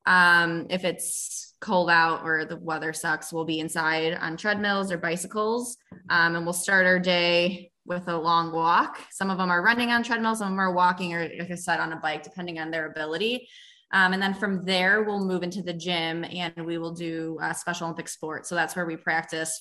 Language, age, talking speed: English, 20-39, 220 wpm